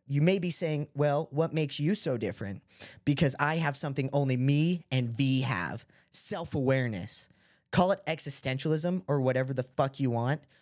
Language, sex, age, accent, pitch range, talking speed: English, male, 20-39, American, 120-155 Hz, 165 wpm